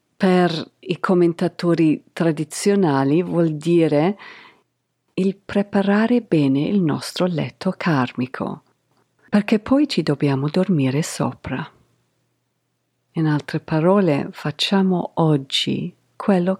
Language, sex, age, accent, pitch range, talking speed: Italian, female, 50-69, native, 145-195 Hz, 90 wpm